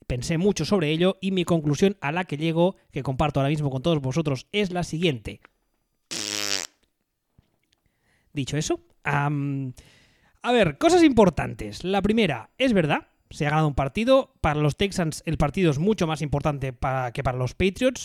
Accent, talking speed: Spanish, 170 wpm